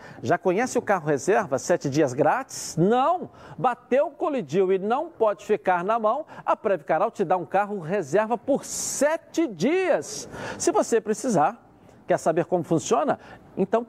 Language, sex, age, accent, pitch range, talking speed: Portuguese, male, 60-79, Brazilian, 185-255 Hz, 150 wpm